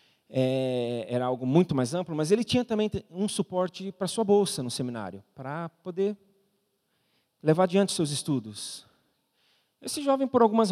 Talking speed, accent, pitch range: 155 wpm, Brazilian, 130-200 Hz